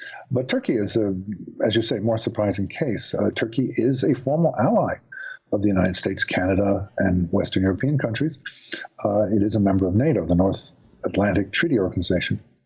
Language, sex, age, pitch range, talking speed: English, male, 50-69, 95-125 Hz, 175 wpm